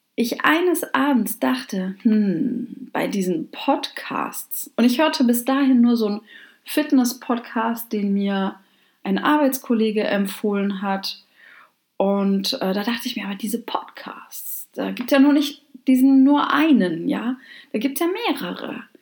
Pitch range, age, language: 200-270 Hz, 30-49, German